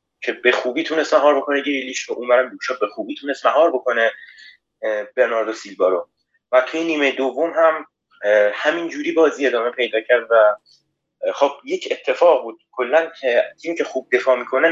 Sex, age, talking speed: male, 30-49, 165 wpm